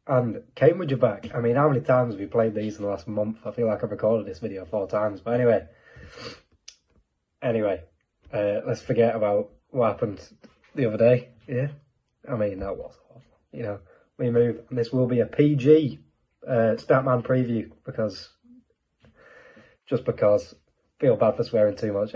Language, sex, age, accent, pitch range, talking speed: English, male, 20-39, British, 110-130 Hz, 175 wpm